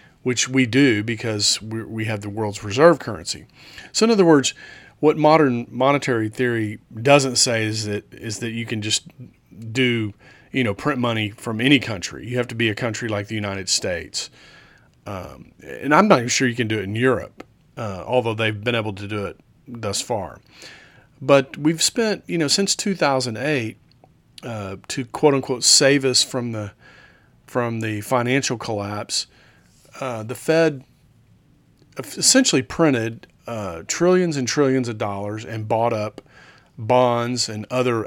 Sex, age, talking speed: male, 40-59, 160 wpm